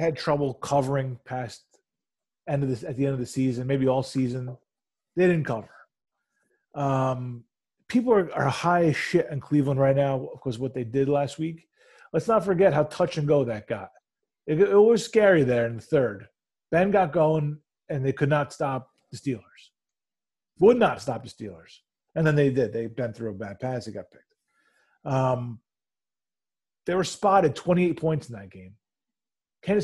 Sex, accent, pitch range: male, American, 130-165 Hz